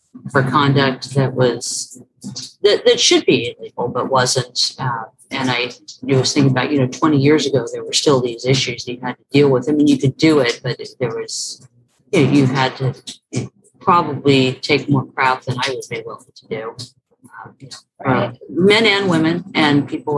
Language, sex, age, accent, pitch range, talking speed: English, female, 40-59, American, 130-150 Hz, 200 wpm